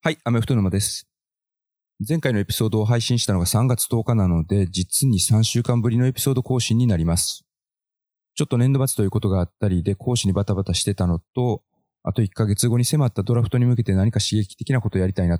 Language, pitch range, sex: Japanese, 95-120 Hz, male